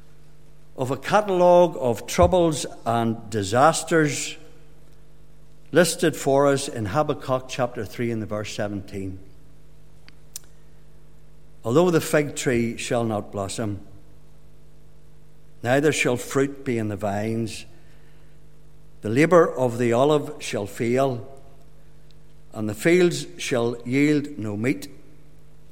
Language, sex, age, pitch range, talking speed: English, male, 60-79, 115-150 Hz, 105 wpm